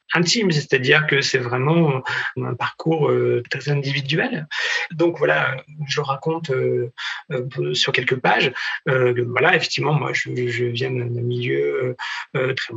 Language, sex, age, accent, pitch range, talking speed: French, male, 40-59, French, 130-170 Hz, 115 wpm